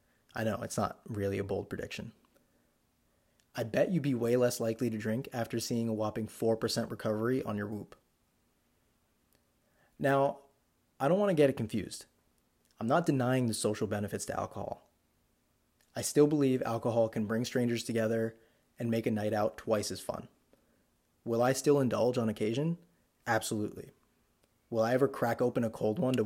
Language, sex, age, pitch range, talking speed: English, male, 20-39, 110-130 Hz, 170 wpm